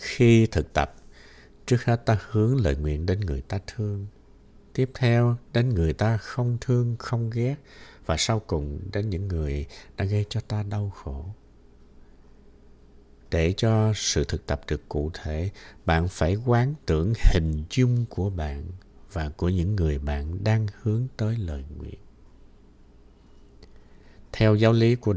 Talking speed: 155 wpm